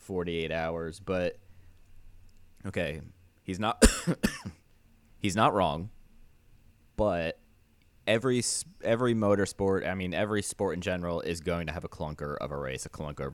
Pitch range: 80-95 Hz